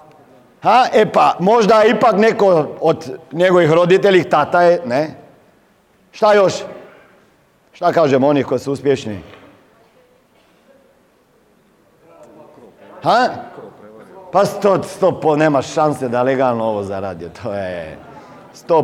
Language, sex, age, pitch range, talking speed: Croatian, male, 50-69, 130-190 Hz, 110 wpm